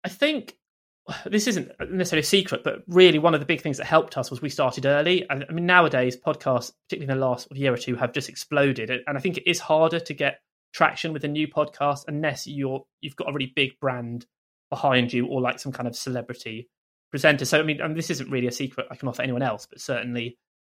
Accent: British